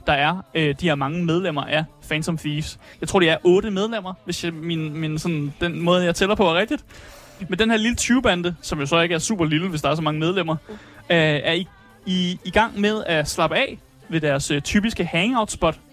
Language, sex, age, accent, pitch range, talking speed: Danish, male, 20-39, native, 155-205 Hz, 230 wpm